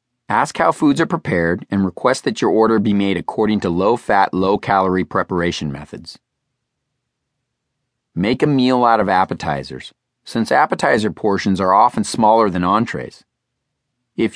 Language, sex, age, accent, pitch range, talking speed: English, male, 40-59, American, 95-125 Hz, 140 wpm